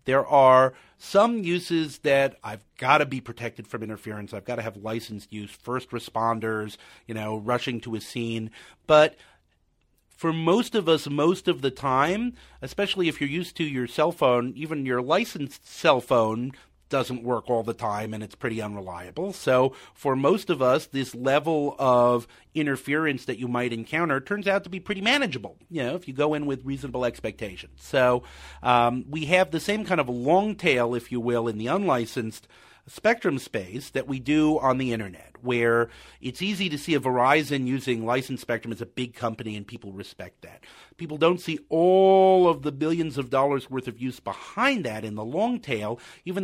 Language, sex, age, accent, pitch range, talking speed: English, male, 40-59, American, 115-155 Hz, 190 wpm